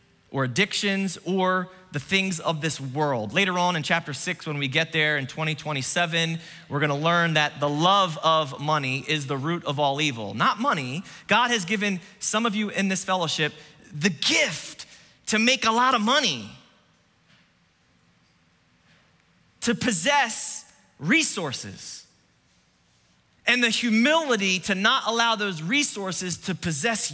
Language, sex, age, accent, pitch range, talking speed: English, male, 30-49, American, 150-215 Hz, 145 wpm